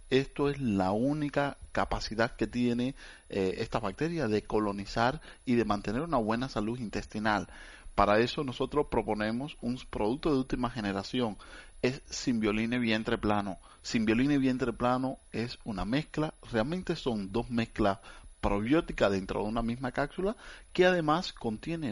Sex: male